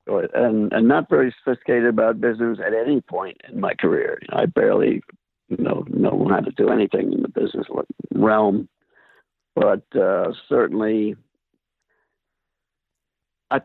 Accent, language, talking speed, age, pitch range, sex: American, English, 140 wpm, 60-79, 110-140 Hz, male